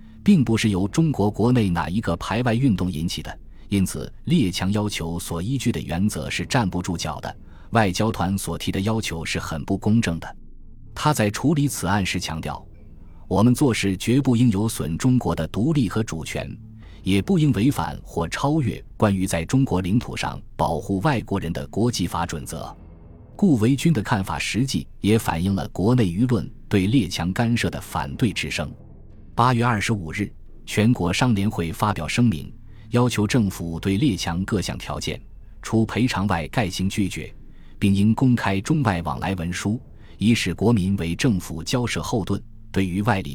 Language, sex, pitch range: Chinese, male, 85-115 Hz